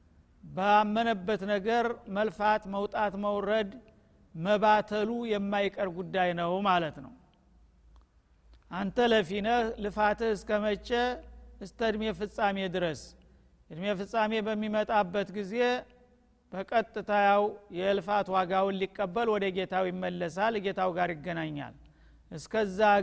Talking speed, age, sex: 90 wpm, 50-69, male